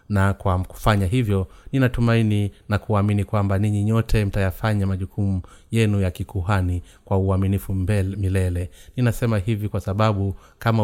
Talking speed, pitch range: 135 wpm, 95-105 Hz